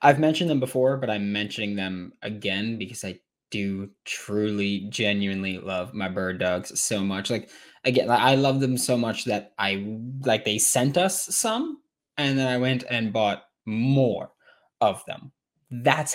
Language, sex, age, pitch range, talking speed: English, male, 20-39, 105-135 Hz, 165 wpm